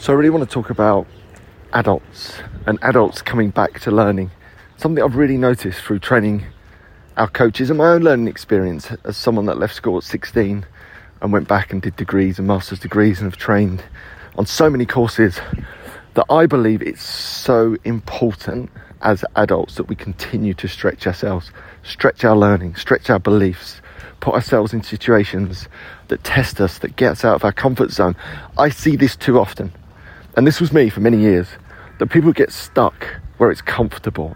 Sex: male